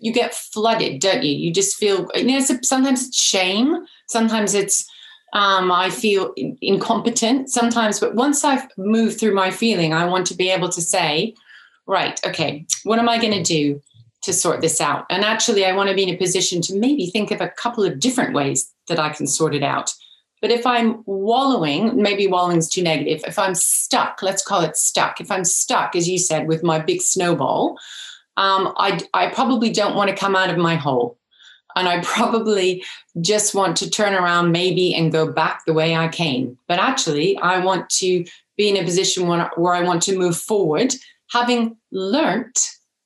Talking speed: 195 wpm